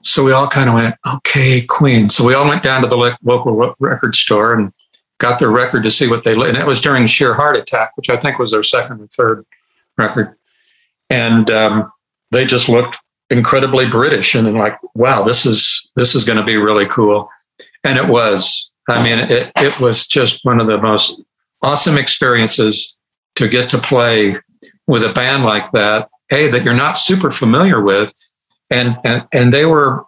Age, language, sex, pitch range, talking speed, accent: 60-79, English, male, 110-135 Hz, 195 wpm, American